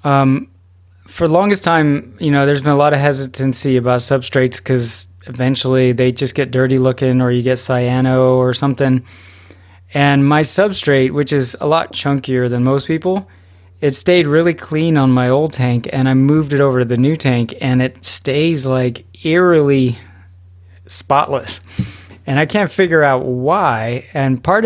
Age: 20-39